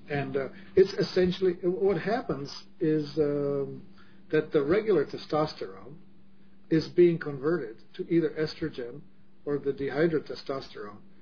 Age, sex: 50-69, male